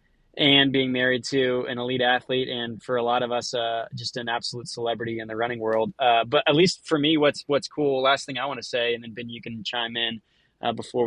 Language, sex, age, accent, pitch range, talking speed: English, male, 20-39, American, 120-135 Hz, 250 wpm